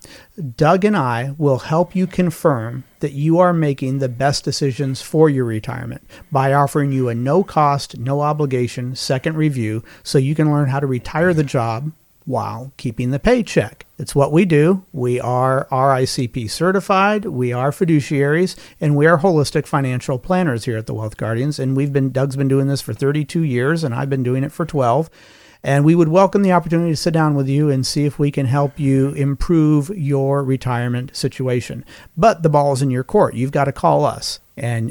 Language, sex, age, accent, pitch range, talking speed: English, male, 50-69, American, 130-160 Hz, 195 wpm